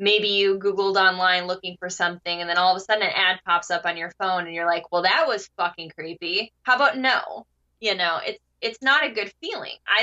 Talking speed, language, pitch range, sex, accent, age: 240 wpm, English, 180-225 Hz, female, American, 20-39